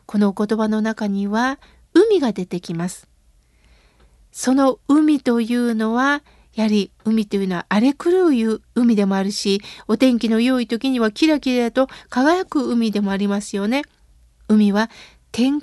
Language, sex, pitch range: Japanese, female, 210-280 Hz